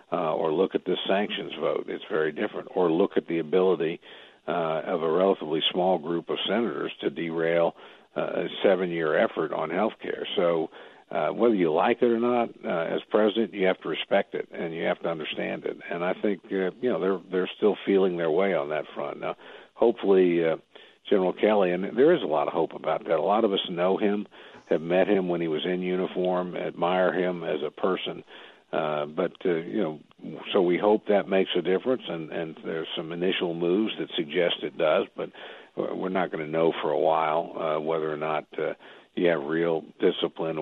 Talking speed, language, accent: 210 wpm, English, American